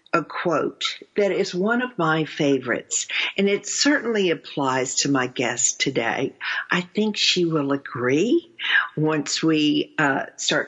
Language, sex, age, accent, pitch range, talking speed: English, female, 50-69, American, 155-210 Hz, 140 wpm